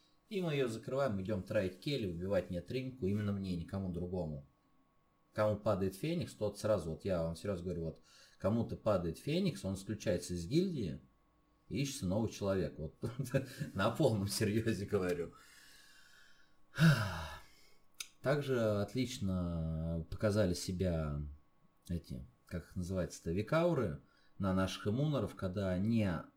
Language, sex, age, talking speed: Russian, male, 30-49, 125 wpm